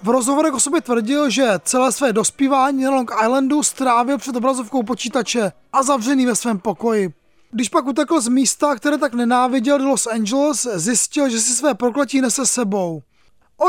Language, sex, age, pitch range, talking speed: Czech, male, 20-39, 235-285 Hz, 170 wpm